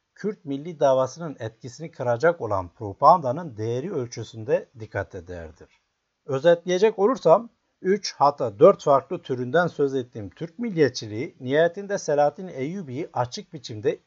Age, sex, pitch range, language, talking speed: 60-79, male, 115-175 Hz, Turkish, 115 wpm